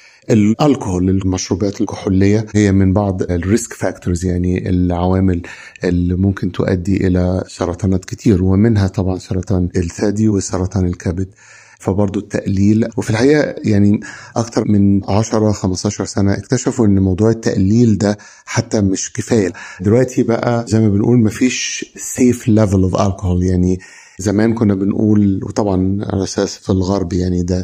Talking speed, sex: 130 wpm, male